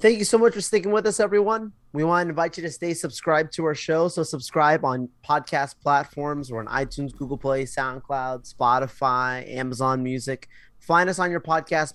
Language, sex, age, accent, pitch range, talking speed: English, male, 20-39, American, 125-155 Hz, 195 wpm